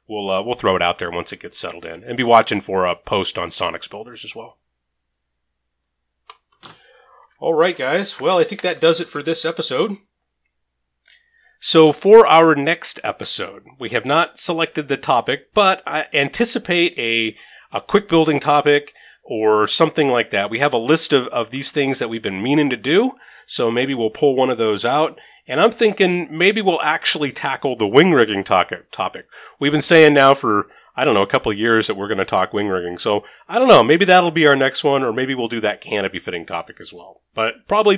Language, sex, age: English, male, 30-49